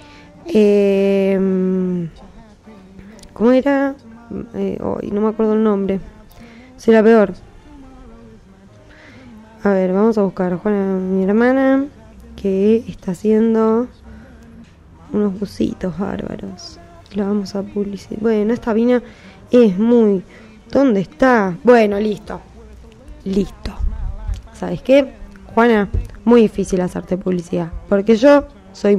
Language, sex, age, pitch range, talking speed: Spanish, female, 20-39, 195-230 Hz, 110 wpm